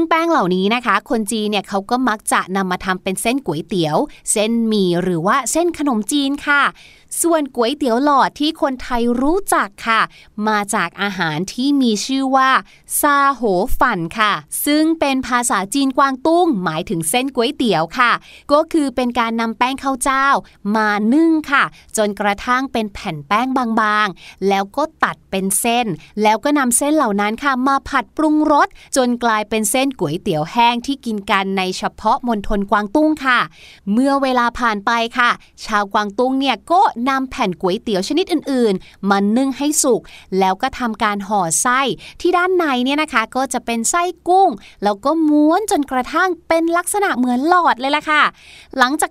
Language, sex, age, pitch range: Thai, female, 20-39, 210-295 Hz